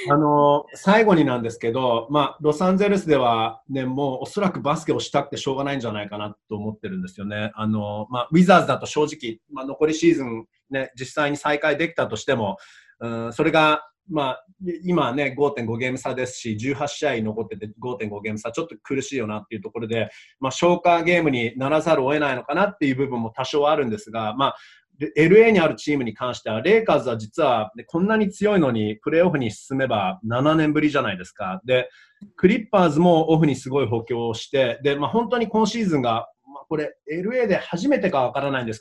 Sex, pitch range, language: male, 115-170 Hz, Japanese